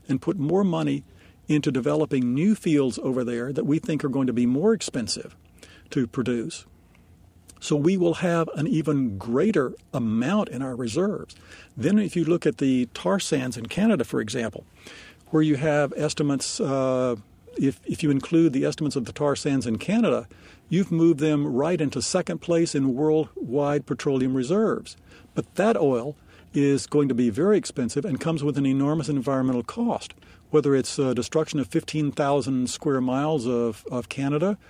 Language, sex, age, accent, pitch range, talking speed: English, male, 50-69, American, 125-160 Hz, 170 wpm